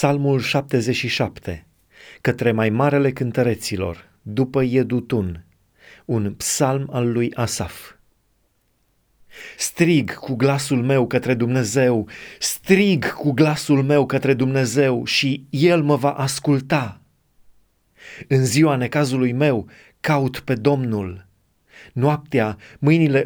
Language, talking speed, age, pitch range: Romanian, 100 wpm, 30-49, 115-145 Hz